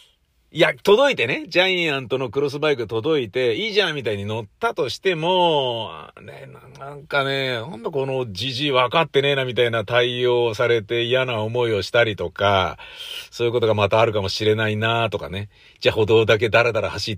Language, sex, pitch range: Japanese, male, 100-140 Hz